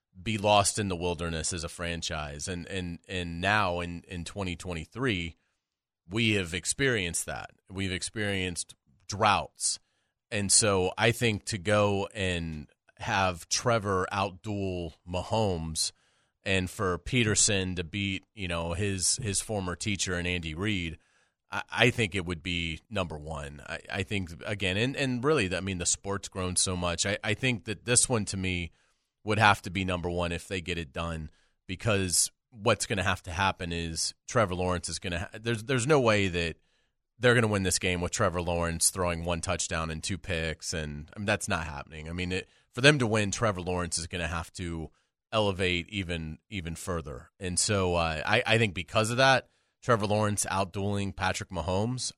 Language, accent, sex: English, American, male